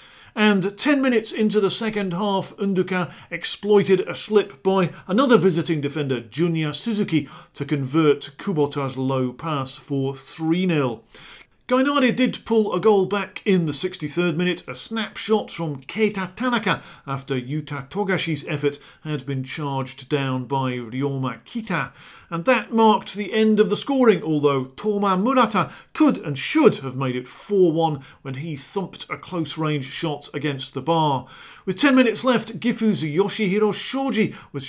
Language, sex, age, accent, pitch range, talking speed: English, male, 40-59, British, 145-205 Hz, 145 wpm